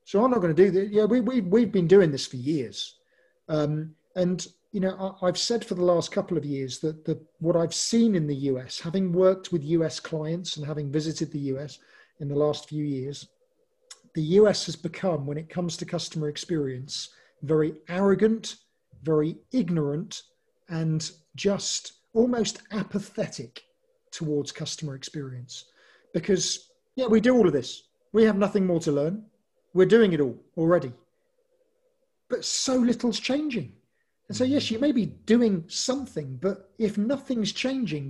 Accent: British